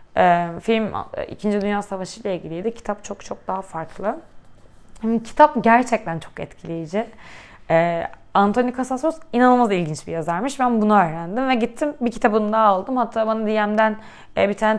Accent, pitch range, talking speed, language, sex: native, 185-255 Hz, 140 wpm, Turkish, female